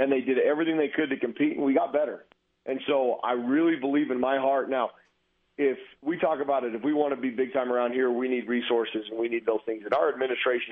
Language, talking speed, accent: English, 260 wpm, American